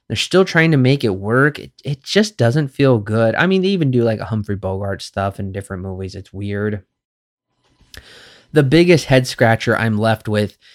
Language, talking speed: English, 195 wpm